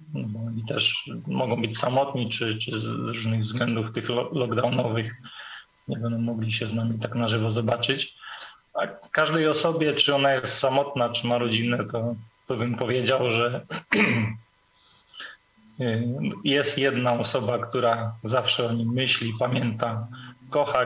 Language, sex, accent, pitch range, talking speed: Polish, male, native, 115-125 Hz, 135 wpm